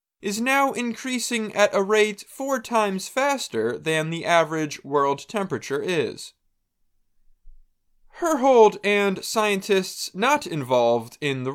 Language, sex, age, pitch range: Chinese, male, 20-39, 160-220 Hz